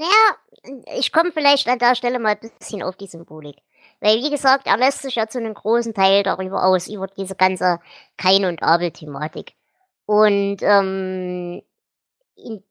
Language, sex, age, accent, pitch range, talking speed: German, male, 20-39, German, 190-245 Hz, 165 wpm